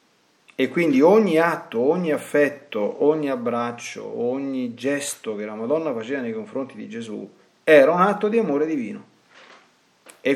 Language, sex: Italian, male